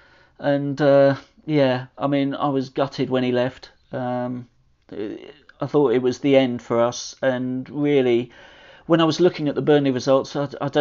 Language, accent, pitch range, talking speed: English, British, 120-140 Hz, 185 wpm